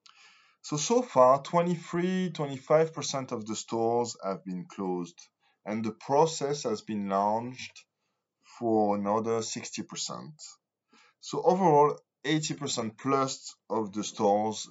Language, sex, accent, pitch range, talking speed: English, male, French, 95-145 Hz, 105 wpm